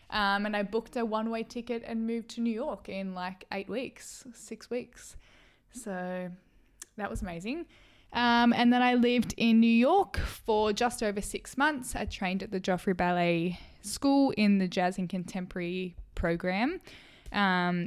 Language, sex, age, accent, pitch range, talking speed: English, female, 10-29, Australian, 180-230 Hz, 165 wpm